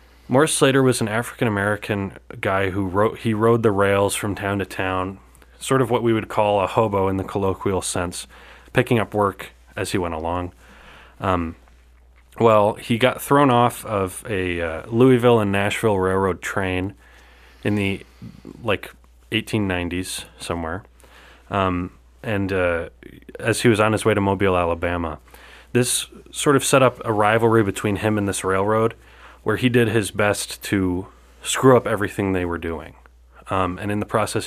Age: 30-49